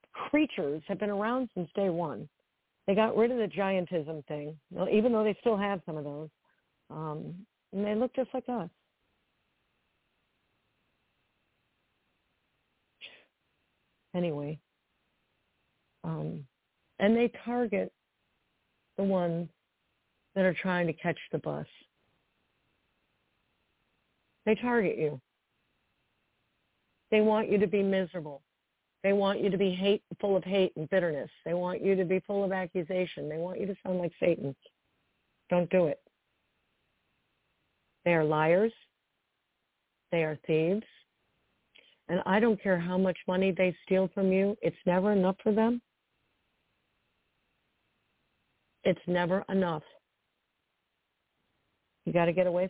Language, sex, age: English, female, 50-69